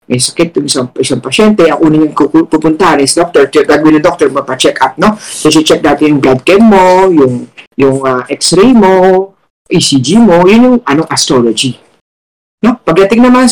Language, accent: Filipino, native